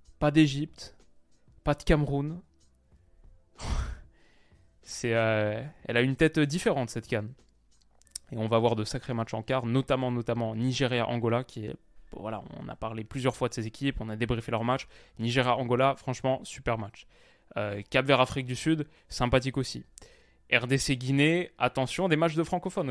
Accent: French